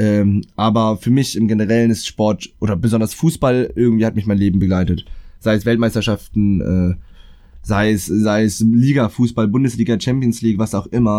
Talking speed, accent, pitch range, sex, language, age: 175 wpm, German, 95-120 Hz, male, German, 20-39